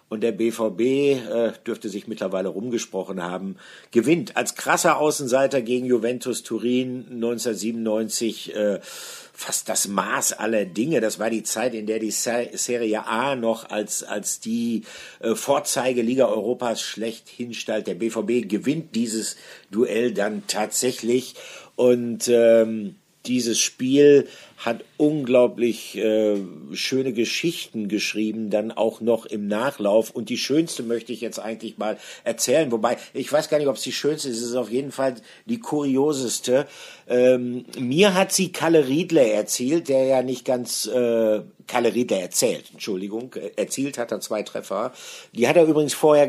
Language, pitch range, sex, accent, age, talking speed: German, 110-130 Hz, male, German, 50-69, 150 wpm